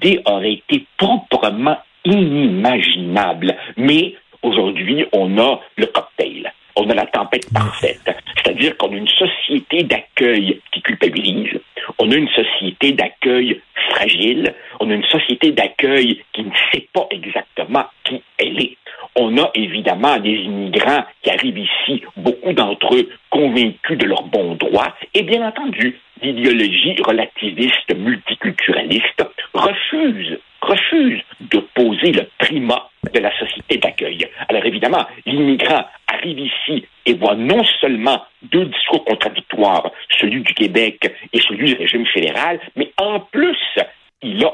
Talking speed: 135 wpm